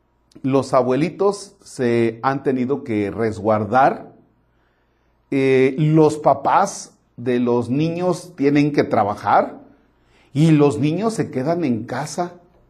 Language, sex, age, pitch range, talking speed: Spanish, male, 40-59, 115-160 Hz, 110 wpm